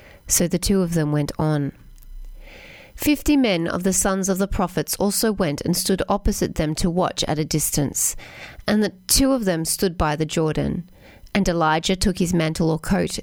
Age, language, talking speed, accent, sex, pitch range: 30-49, English, 190 wpm, Australian, female, 160-210 Hz